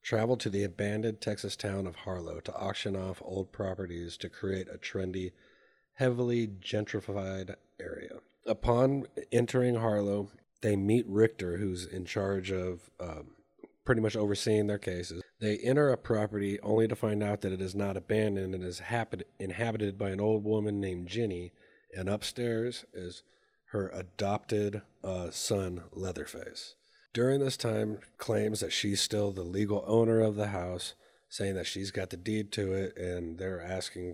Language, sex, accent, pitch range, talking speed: English, male, American, 95-110 Hz, 160 wpm